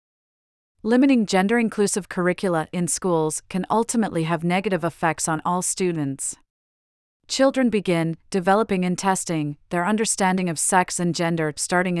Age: 30-49